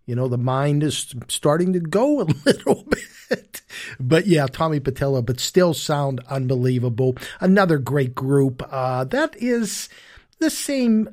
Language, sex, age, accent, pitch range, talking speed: English, male, 50-69, American, 135-180 Hz, 145 wpm